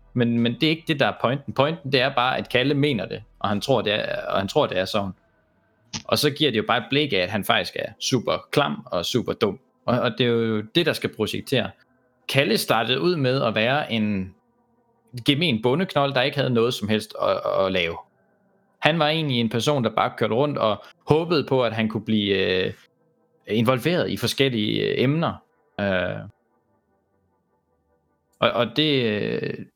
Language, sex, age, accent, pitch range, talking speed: Danish, male, 20-39, native, 110-150 Hz, 195 wpm